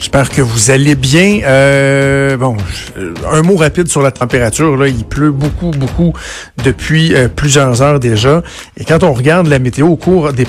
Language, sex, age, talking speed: French, male, 60-79, 185 wpm